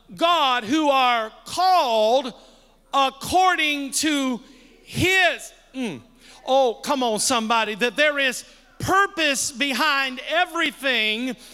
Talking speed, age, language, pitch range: 95 wpm, 50-69, English, 245-315 Hz